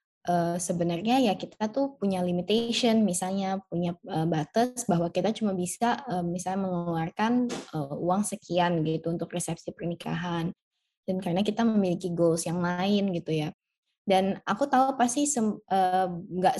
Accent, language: native, Indonesian